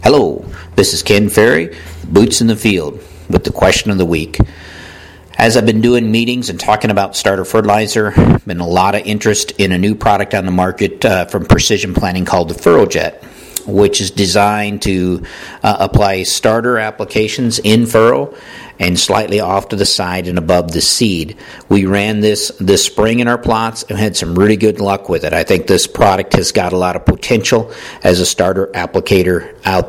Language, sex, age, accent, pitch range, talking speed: English, male, 50-69, American, 90-110 Hz, 190 wpm